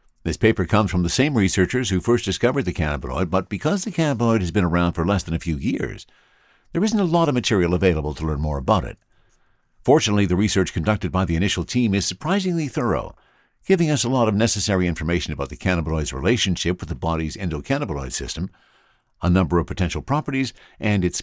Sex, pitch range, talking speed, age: male, 85-120 Hz, 200 wpm, 60-79